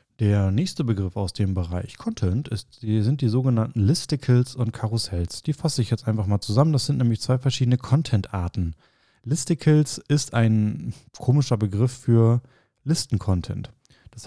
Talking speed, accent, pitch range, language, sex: 145 wpm, German, 100-125 Hz, German, male